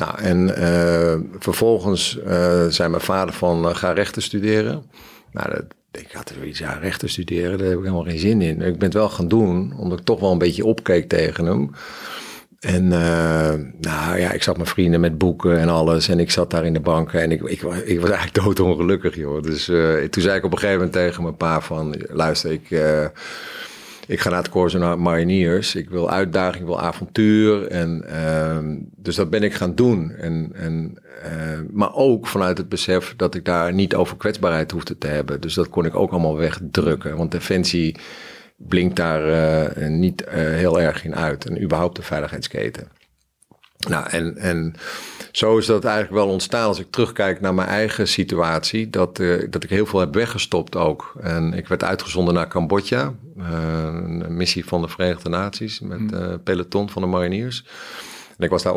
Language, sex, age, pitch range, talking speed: Dutch, male, 50-69, 85-95 Hz, 205 wpm